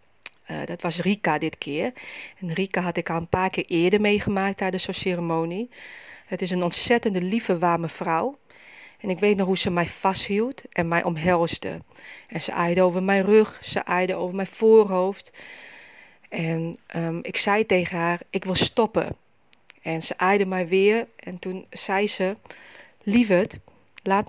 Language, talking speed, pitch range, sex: Dutch, 170 wpm, 175-210 Hz, female